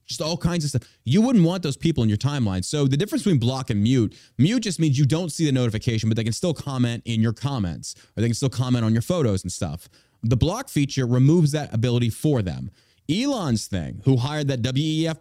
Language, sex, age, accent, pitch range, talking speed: English, male, 30-49, American, 105-145 Hz, 235 wpm